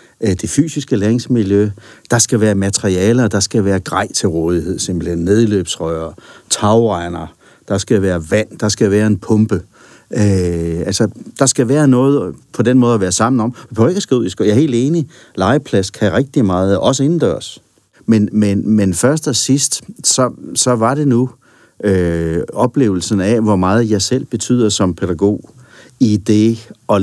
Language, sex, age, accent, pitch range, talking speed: Danish, male, 60-79, native, 95-125 Hz, 175 wpm